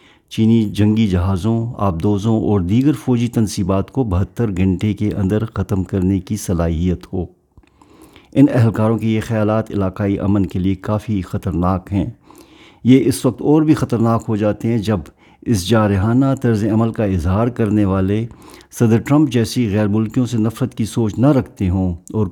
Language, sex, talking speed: Urdu, male, 165 wpm